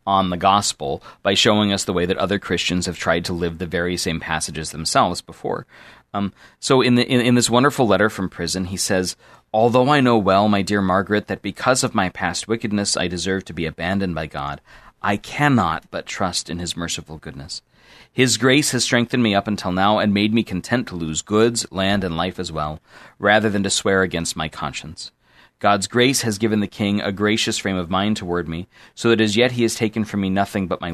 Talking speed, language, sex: 220 wpm, English, male